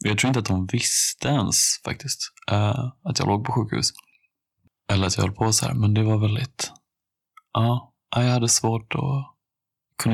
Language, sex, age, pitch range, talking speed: Swedish, male, 20-39, 105-130 Hz, 185 wpm